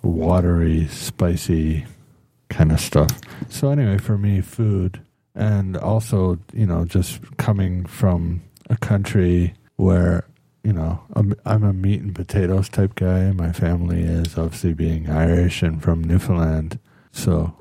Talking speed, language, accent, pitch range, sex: 135 wpm, English, American, 90-110 Hz, male